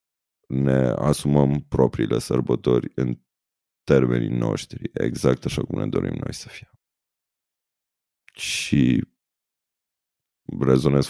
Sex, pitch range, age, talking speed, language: male, 65-80 Hz, 30-49, 90 wpm, Romanian